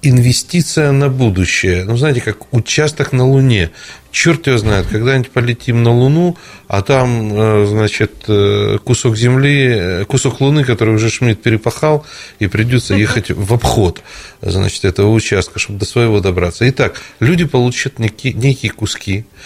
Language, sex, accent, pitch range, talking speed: Russian, male, native, 110-145 Hz, 140 wpm